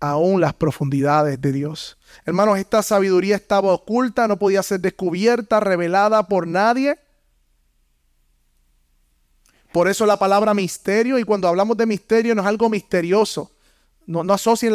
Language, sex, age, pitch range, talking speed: Spanish, male, 30-49, 150-215 Hz, 140 wpm